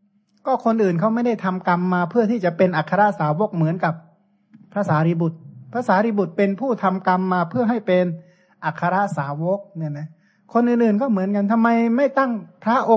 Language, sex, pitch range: Thai, male, 160-200 Hz